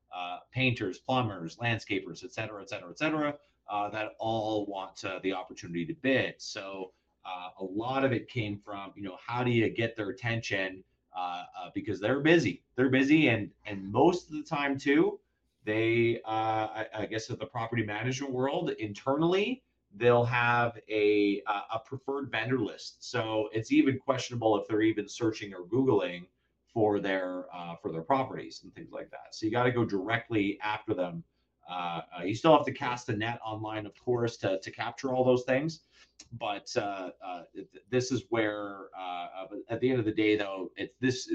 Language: English